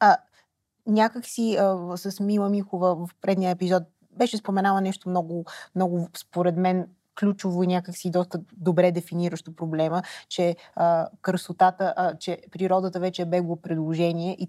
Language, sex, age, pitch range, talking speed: Bulgarian, female, 20-39, 170-195 Hz, 135 wpm